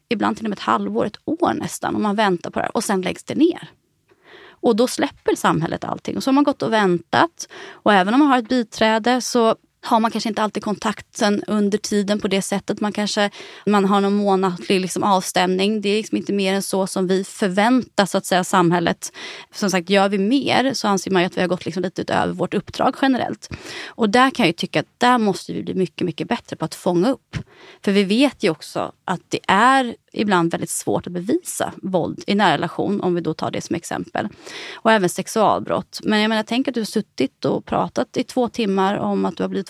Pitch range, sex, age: 185-240 Hz, female, 20-39